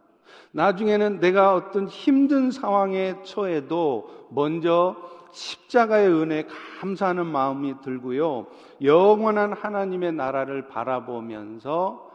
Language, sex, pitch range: Korean, male, 145-215 Hz